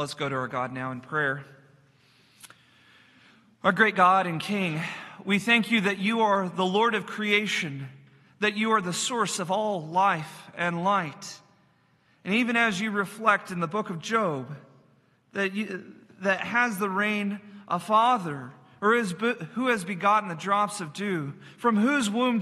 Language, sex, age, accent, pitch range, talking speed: English, male, 40-59, American, 180-215 Hz, 170 wpm